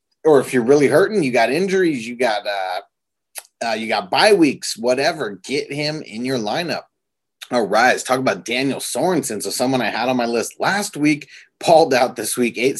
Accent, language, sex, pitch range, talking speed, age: American, English, male, 125-160 Hz, 200 wpm, 30-49